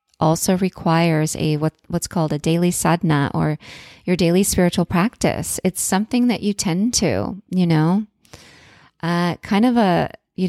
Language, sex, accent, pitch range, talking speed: English, female, American, 160-190 Hz, 155 wpm